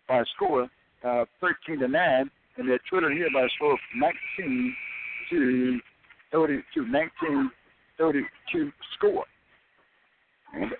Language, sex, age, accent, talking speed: English, male, 60-79, American, 115 wpm